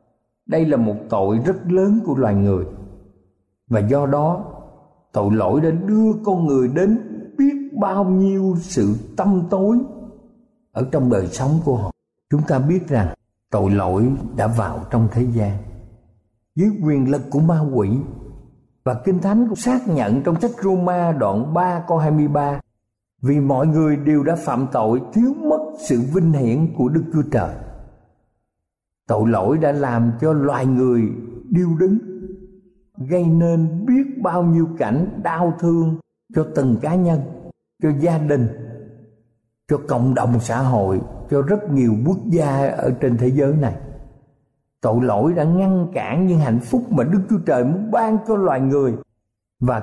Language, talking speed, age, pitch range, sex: Vietnamese, 160 wpm, 60-79, 115-180 Hz, male